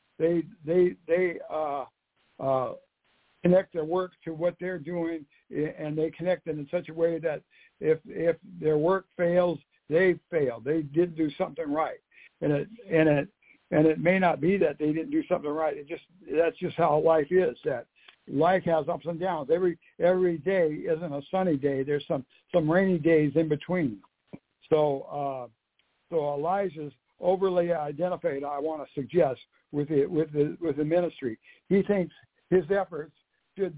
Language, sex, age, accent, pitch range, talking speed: English, male, 60-79, American, 150-175 Hz, 170 wpm